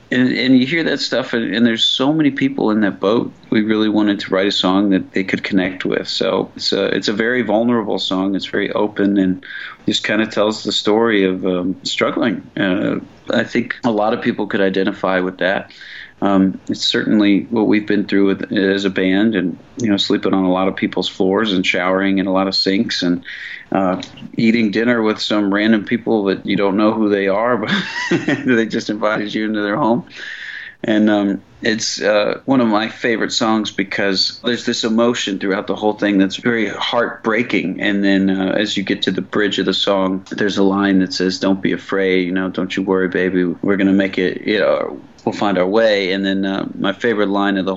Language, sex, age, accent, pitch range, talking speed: English, male, 40-59, American, 95-105 Hz, 220 wpm